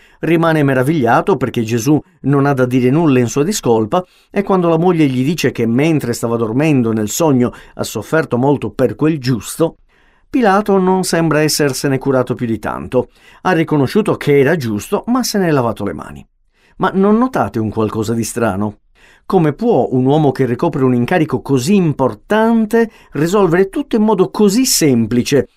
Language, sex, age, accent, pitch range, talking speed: Italian, male, 50-69, native, 120-190 Hz, 170 wpm